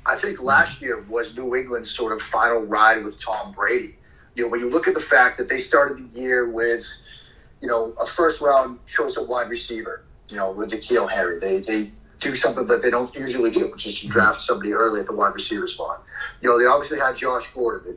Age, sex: 40-59, male